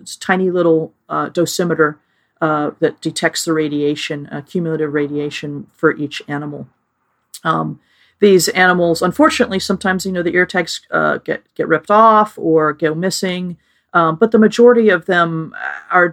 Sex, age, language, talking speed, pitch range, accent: female, 40-59, English, 155 wpm, 155-175 Hz, American